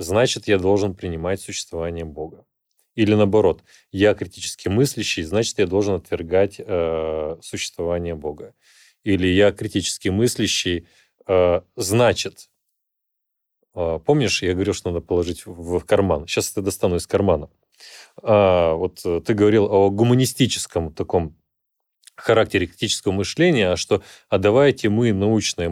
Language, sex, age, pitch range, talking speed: Russian, male, 30-49, 90-110 Hz, 130 wpm